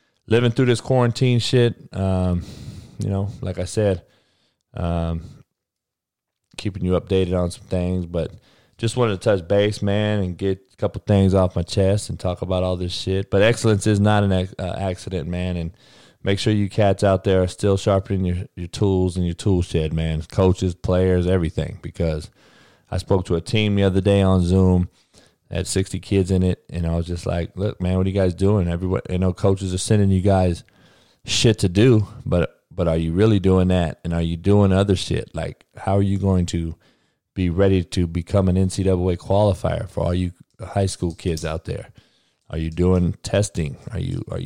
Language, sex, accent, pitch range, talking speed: English, male, American, 90-105 Hz, 200 wpm